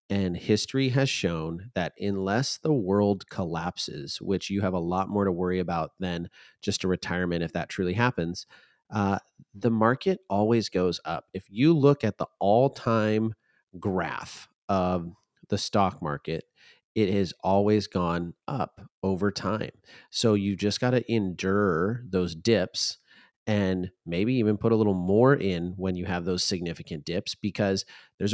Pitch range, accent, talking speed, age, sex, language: 90-110 Hz, American, 160 wpm, 30-49, male, English